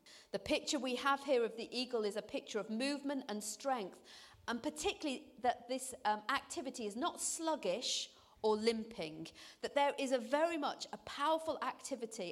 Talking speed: 170 wpm